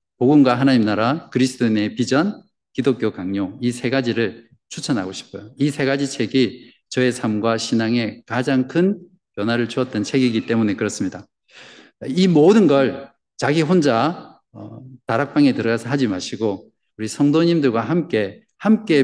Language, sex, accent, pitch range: Korean, male, native, 110-140 Hz